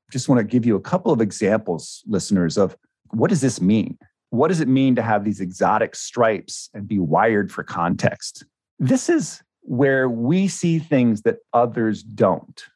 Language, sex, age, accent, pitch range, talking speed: English, male, 40-59, American, 115-155 Hz, 180 wpm